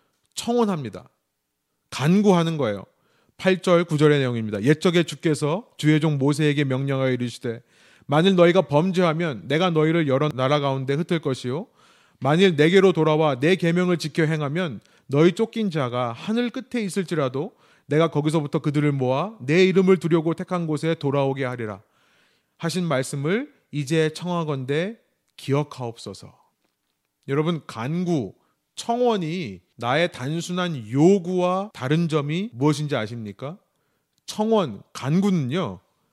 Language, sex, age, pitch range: Korean, male, 30-49, 135-185 Hz